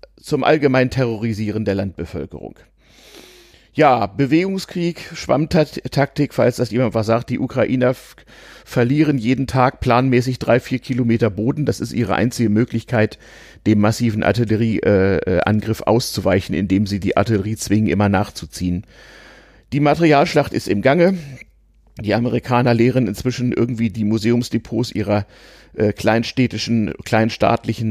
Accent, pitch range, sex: German, 105-125 Hz, male